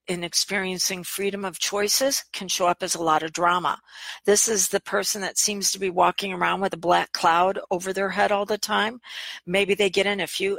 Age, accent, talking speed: 50-69, American, 220 wpm